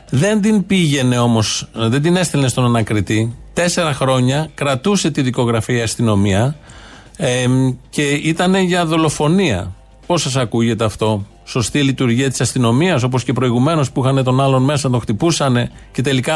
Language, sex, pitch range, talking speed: Greek, male, 125-165 Hz, 150 wpm